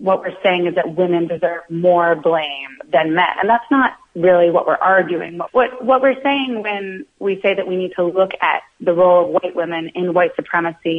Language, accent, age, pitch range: English, American, 30-49, 165-190 Hz